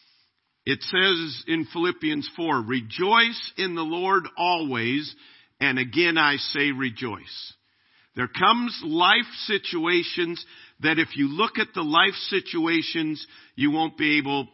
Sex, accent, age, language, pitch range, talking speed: male, American, 50-69, English, 130-195 Hz, 130 wpm